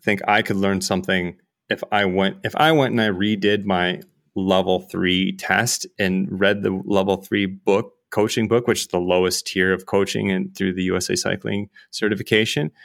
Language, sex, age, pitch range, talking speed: English, male, 30-49, 95-115 Hz, 180 wpm